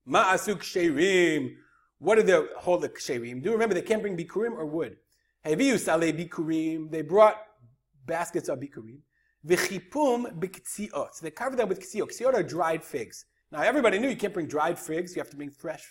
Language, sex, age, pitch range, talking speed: English, male, 30-49, 175-270 Hz, 185 wpm